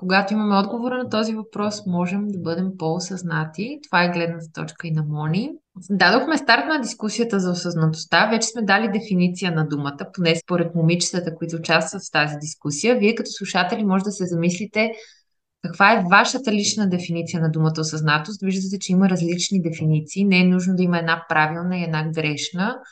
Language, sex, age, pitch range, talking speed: Bulgarian, female, 20-39, 165-205 Hz, 175 wpm